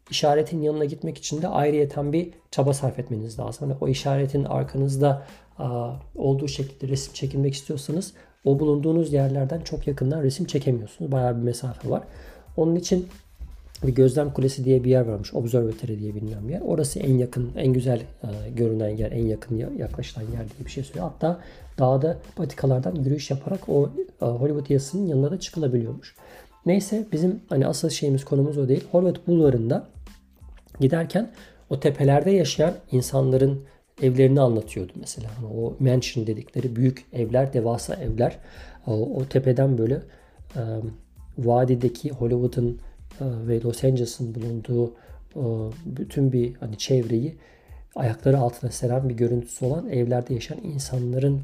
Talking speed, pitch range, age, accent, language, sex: 145 wpm, 120-150 Hz, 40-59, native, Turkish, male